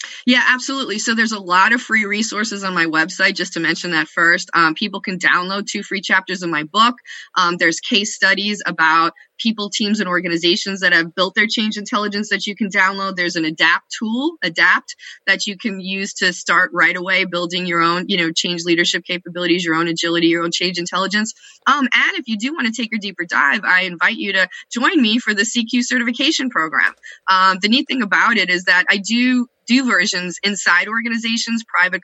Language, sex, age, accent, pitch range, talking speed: English, female, 20-39, American, 180-230 Hz, 205 wpm